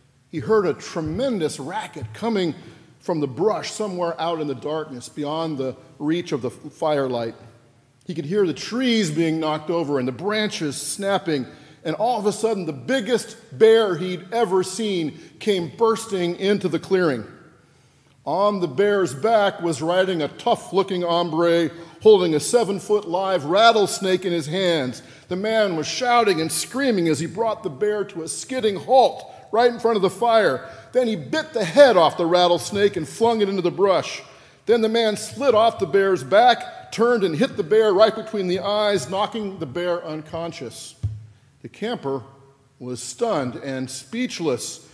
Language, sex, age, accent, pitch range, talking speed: English, male, 50-69, American, 155-210 Hz, 170 wpm